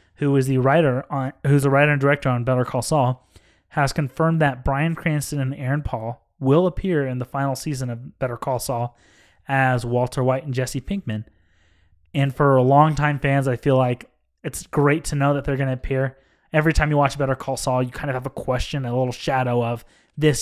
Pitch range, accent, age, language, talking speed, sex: 130-150 Hz, American, 20-39, English, 215 wpm, male